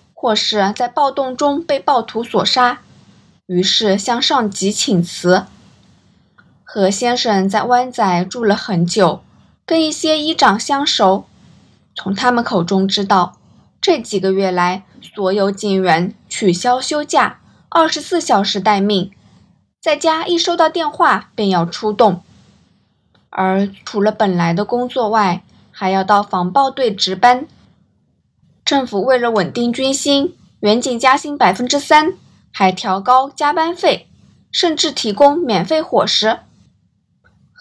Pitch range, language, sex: 195-280 Hz, Chinese, female